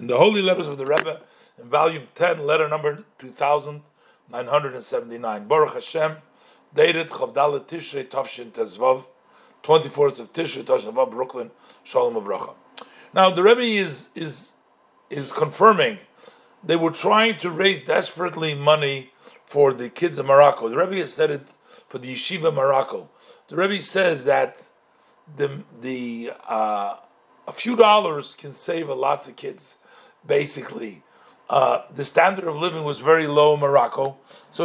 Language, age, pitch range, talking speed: English, 40-59, 140-195 Hz, 155 wpm